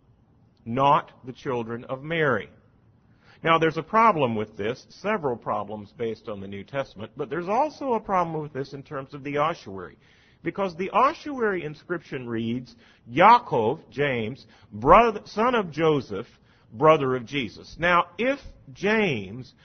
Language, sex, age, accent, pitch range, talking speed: English, male, 50-69, American, 110-155 Hz, 140 wpm